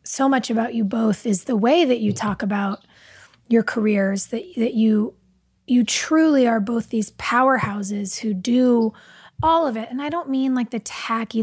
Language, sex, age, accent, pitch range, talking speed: English, female, 20-39, American, 225-300 Hz, 185 wpm